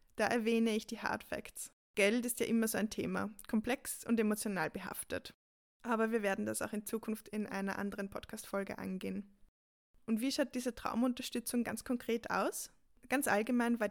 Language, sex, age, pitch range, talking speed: German, female, 20-39, 205-245 Hz, 175 wpm